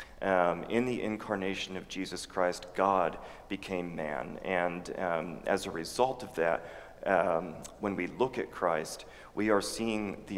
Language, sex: English, male